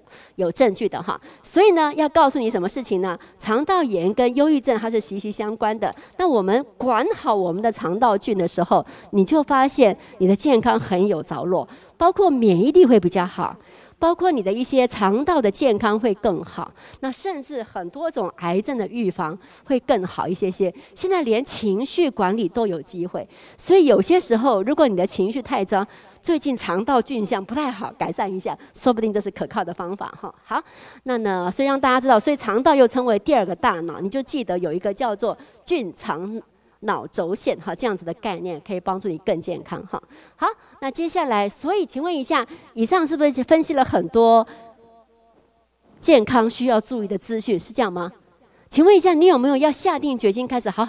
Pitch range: 195-275 Hz